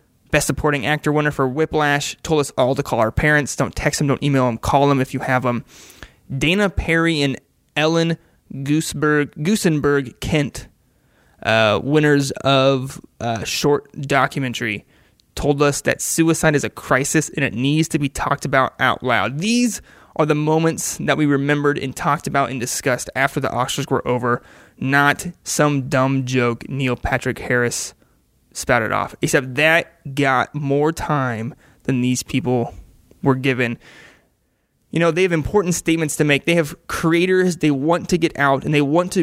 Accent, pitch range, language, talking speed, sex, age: American, 135-165 Hz, English, 165 wpm, male, 20-39